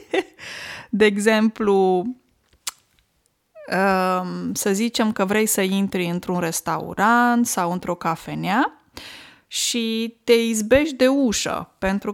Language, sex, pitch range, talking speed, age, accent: Romanian, female, 185-240 Hz, 95 wpm, 20-39, native